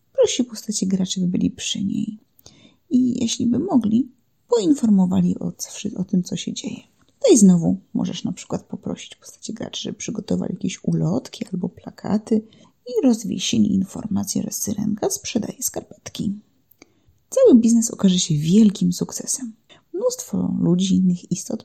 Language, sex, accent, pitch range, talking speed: Polish, female, native, 195-245 Hz, 135 wpm